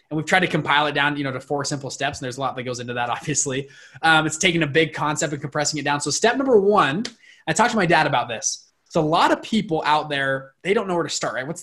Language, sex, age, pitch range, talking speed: English, male, 20-39, 145-180 Hz, 300 wpm